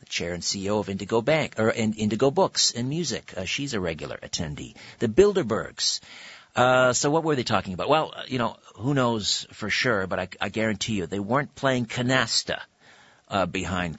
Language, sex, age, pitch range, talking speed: English, male, 50-69, 100-125 Hz, 185 wpm